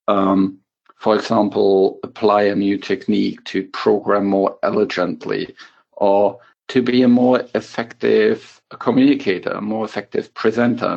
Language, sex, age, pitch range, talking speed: English, male, 50-69, 100-125 Hz, 120 wpm